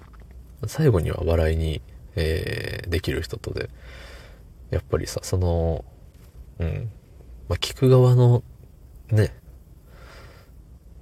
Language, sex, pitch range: Japanese, male, 75-100 Hz